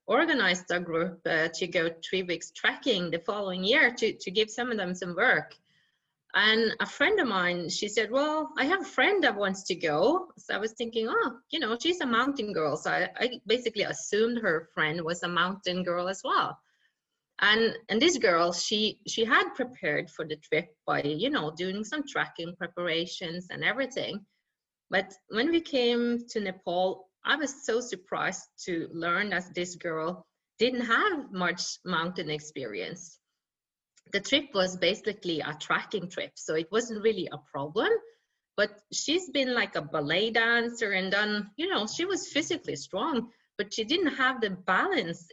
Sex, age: female, 20-39